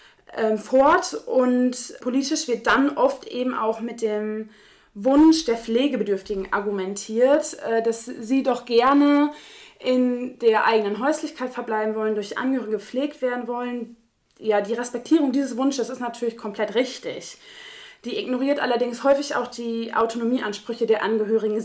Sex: female